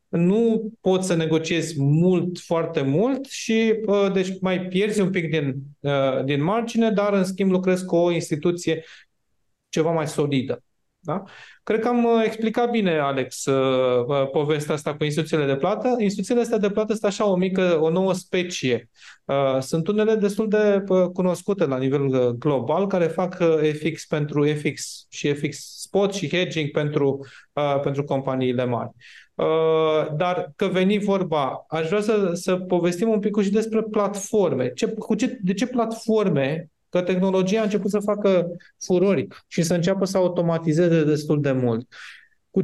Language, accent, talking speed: Romanian, native, 155 wpm